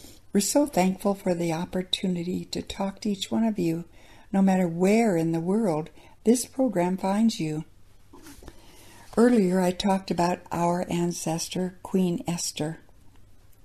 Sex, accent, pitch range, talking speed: female, American, 165-220 Hz, 135 wpm